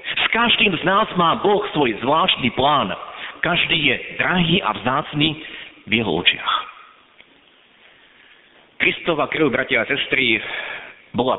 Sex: male